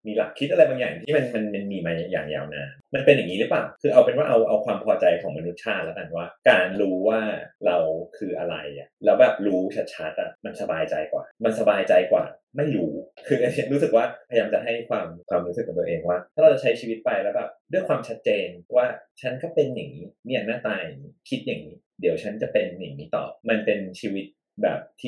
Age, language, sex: 20-39, Thai, male